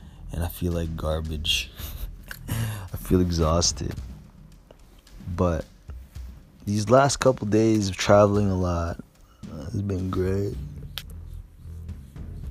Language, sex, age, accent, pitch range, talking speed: English, male, 20-39, American, 80-105 Hz, 100 wpm